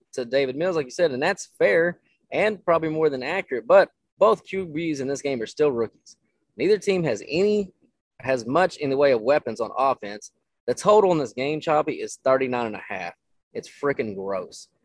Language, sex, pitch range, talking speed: English, male, 130-165 Hz, 200 wpm